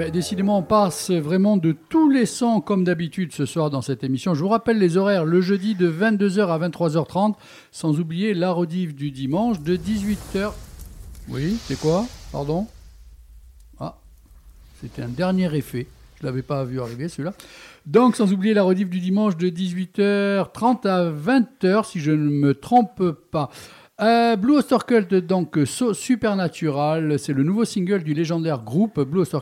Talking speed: 165 wpm